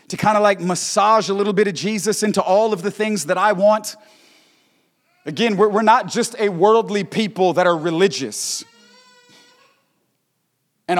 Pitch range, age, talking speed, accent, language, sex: 205-250 Hz, 30-49, 160 wpm, American, English, male